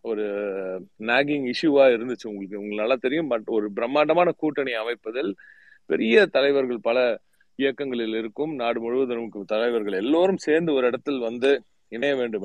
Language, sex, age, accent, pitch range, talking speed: Tamil, male, 30-49, native, 120-165 Hz, 135 wpm